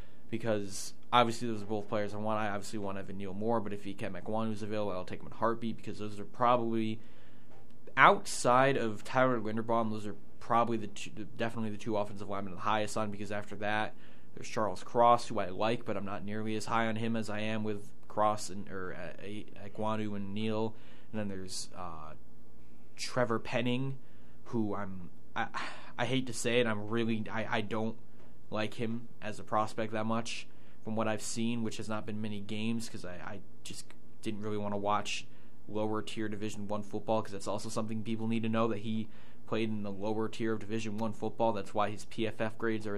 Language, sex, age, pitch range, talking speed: English, male, 20-39, 105-115 Hz, 215 wpm